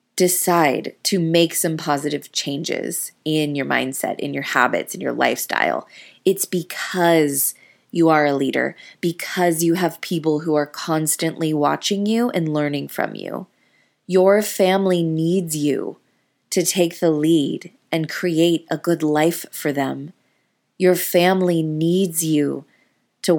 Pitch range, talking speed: 155-190 Hz, 140 wpm